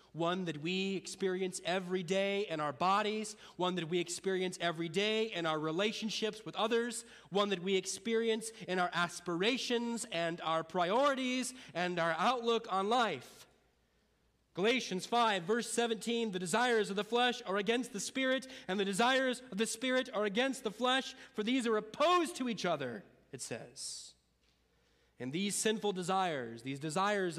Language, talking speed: English, 160 wpm